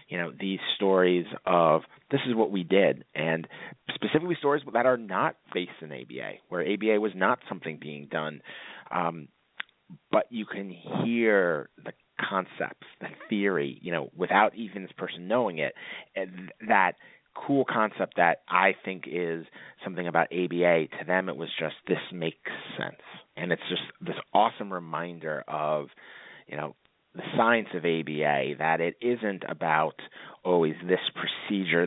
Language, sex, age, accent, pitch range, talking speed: English, male, 30-49, American, 80-100 Hz, 155 wpm